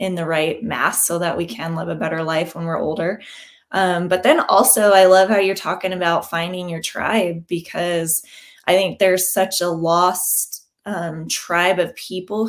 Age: 20-39